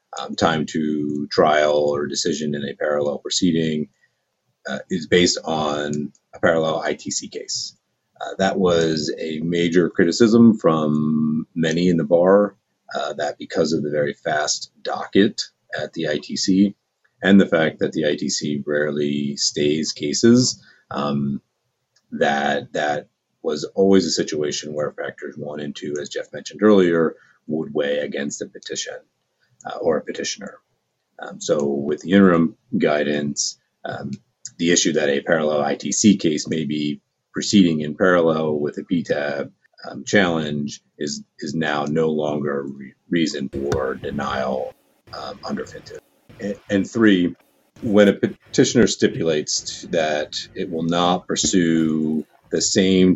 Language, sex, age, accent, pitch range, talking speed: English, male, 30-49, American, 75-90 Hz, 140 wpm